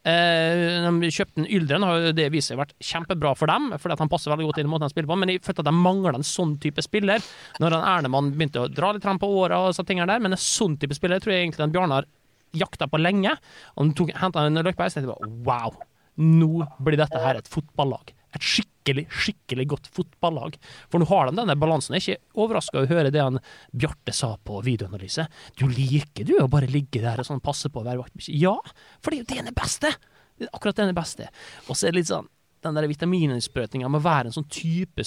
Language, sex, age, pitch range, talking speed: English, male, 20-39, 140-180 Hz, 245 wpm